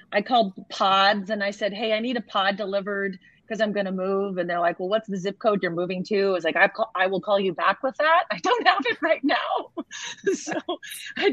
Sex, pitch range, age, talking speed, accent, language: female, 180-250 Hz, 30-49, 255 wpm, American, English